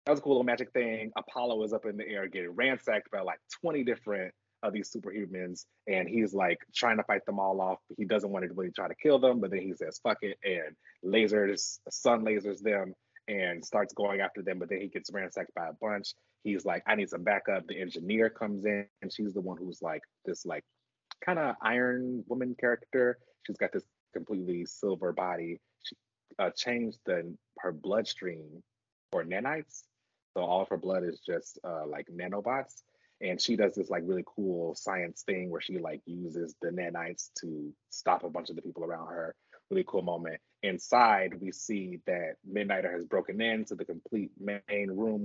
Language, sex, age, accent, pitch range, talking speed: English, male, 30-49, American, 95-120 Hz, 200 wpm